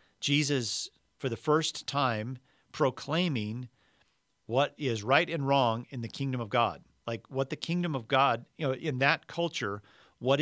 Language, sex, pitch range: English, male, 115-135 Hz